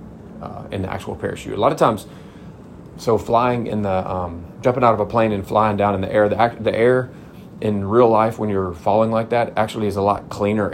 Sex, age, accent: male, 30-49, American